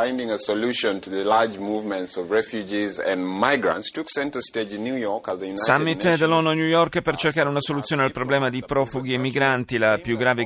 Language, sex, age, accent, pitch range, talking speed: Italian, male, 30-49, native, 110-135 Hz, 105 wpm